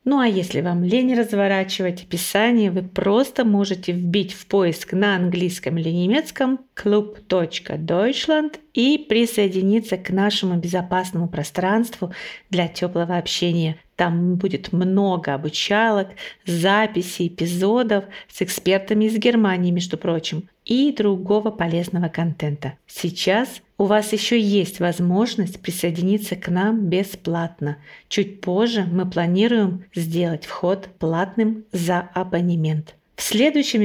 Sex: female